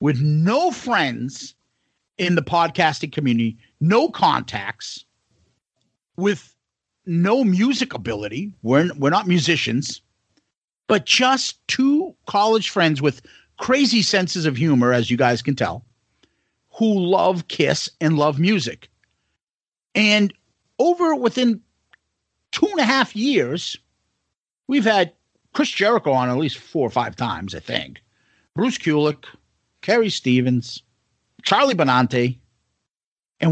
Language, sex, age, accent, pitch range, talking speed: English, male, 50-69, American, 130-200 Hz, 120 wpm